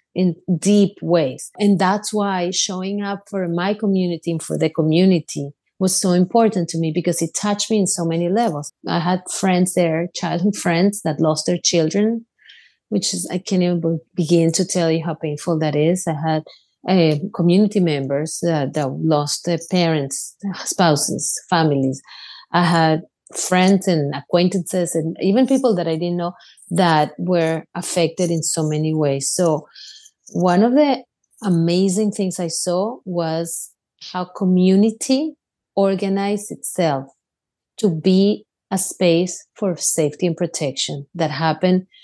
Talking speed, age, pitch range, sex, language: 150 wpm, 30-49, 160-195 Hz, female, English